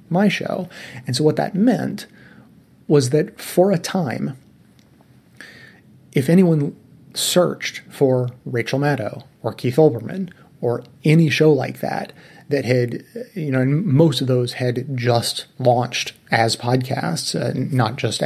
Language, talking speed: English, 135 wpm